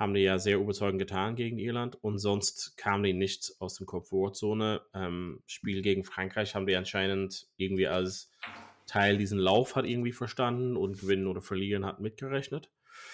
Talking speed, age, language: 170 wpm, 20-39, German